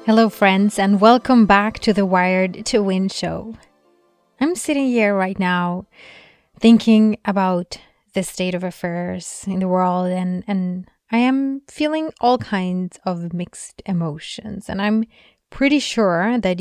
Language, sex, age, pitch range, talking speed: English, female, 20-39, 180-220 Hz, 145 wpm